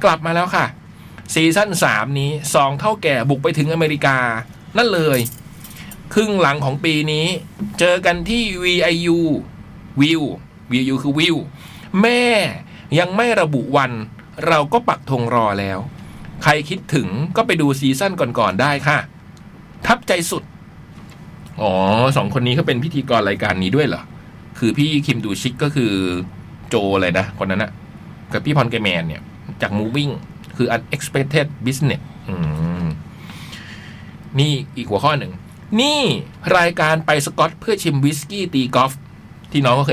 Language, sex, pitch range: Thai, male, 125-175 Hz